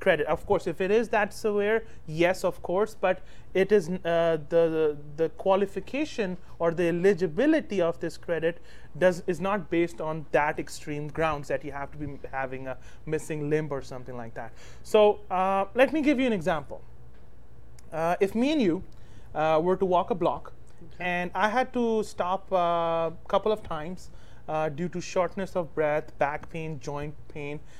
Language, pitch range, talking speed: English, 150-200 Hz, 175 wpm